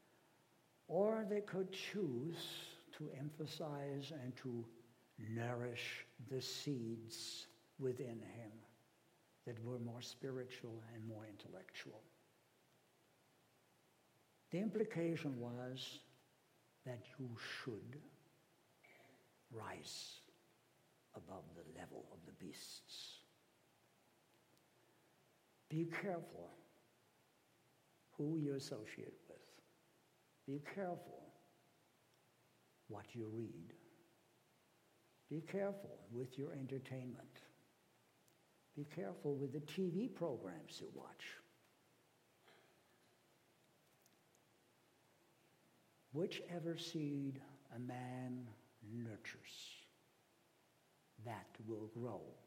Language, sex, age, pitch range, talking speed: English, male, 60-79, 120-170 Hz, 75 wpm